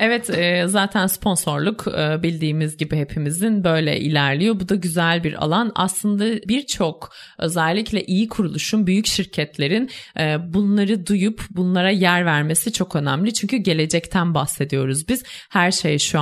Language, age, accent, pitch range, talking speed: Turkish, 30-49, native, 160-205 Hz, 125 wpm